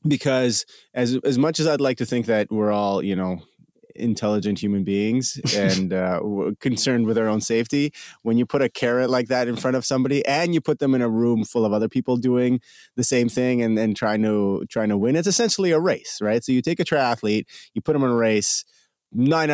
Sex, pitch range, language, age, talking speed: male, 105-135 Hz, English, 30-49, 225 wpm